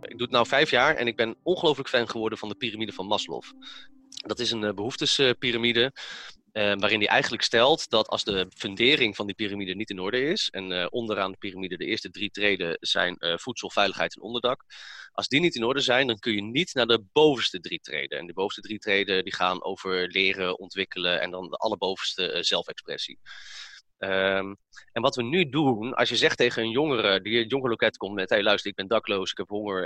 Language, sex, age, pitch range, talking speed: Dutch, male, 30-49, 95-125 Hz, 215 wpm